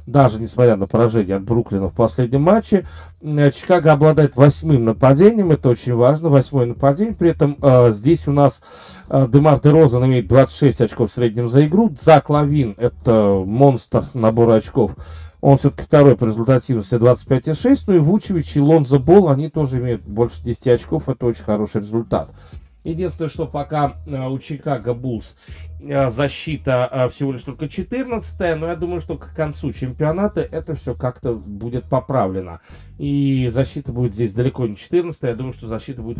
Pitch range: 115-150 Hz